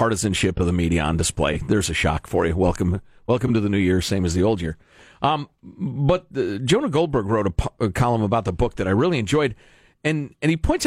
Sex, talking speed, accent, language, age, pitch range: male, 230 wpm, American, English, 50-69, 120-195 Hz